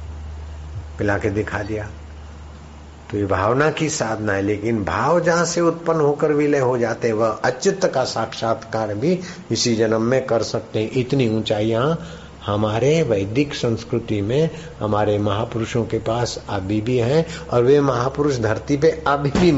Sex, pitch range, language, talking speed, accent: male, 110-160 Hz, Hindi, 145 wpm, native